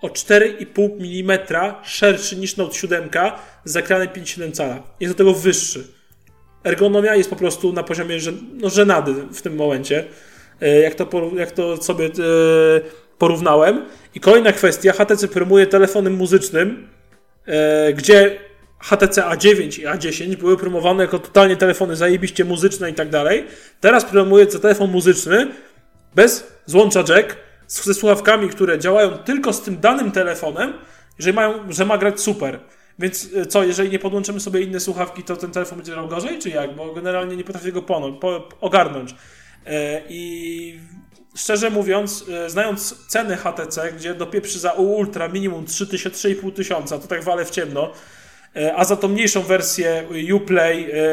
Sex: male